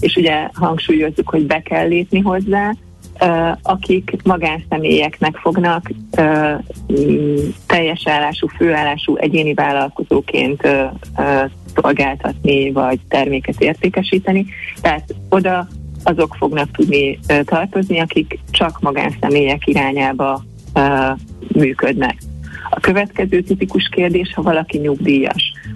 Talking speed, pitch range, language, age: 90 wpm, 145-180 Hz, Hungarian, 30-49